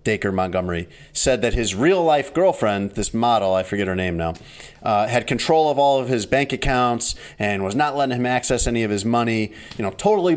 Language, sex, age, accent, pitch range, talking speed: English, male, 30-49, American, 105-140 Hz, 210 wpm